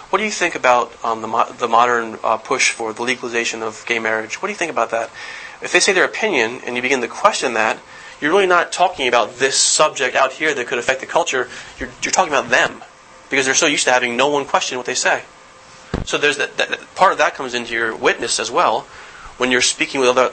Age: 30-49